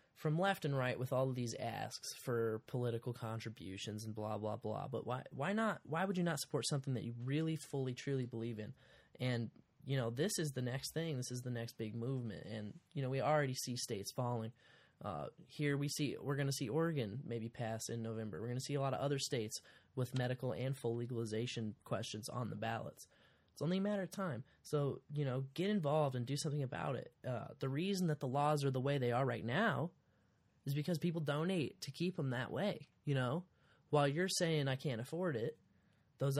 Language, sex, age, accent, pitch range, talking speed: English, male, 10-29, American, 120-155 Hz, 220 wpm